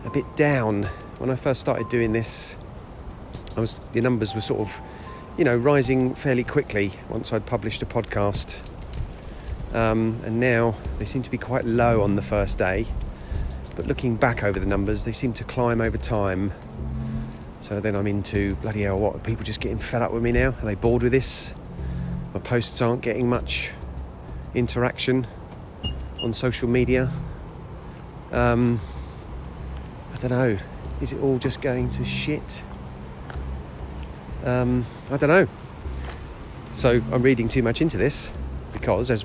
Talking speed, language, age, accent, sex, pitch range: 160 wpm, English, 40-59, British, male, 95-120 Hz